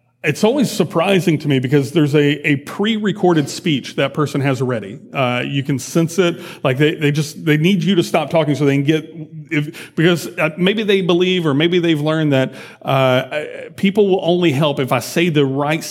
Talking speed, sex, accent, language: 205 wpm, male, American, English